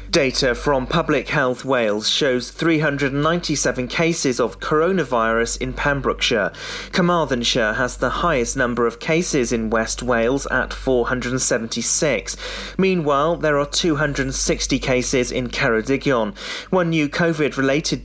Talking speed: 115 wpm